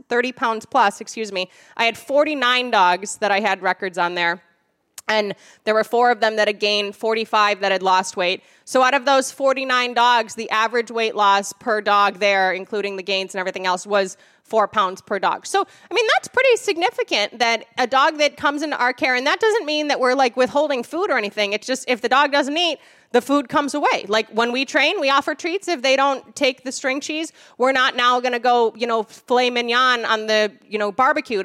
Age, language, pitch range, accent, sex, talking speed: 20-39, English, 215-270 Hz, American, female, 225 wpm